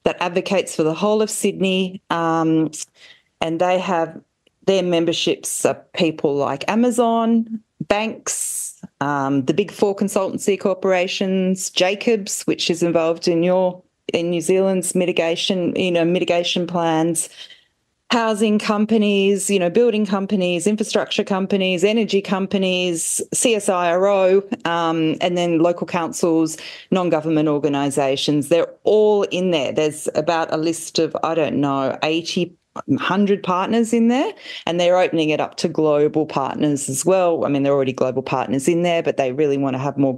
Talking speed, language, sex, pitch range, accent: 145 wpm, English, female, 160-205 Hz, Australian